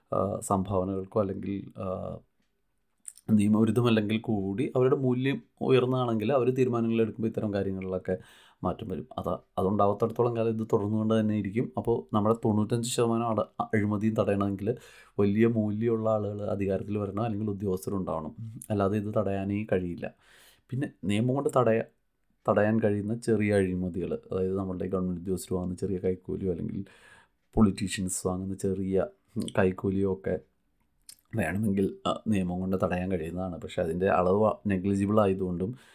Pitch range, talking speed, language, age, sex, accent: 95-115 Hz, 105 wpm, Malayalam, 30-49, male, native